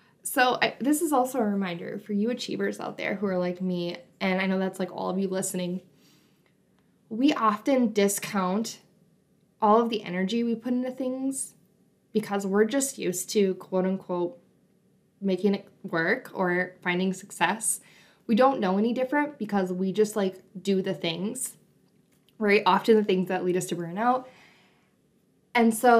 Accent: American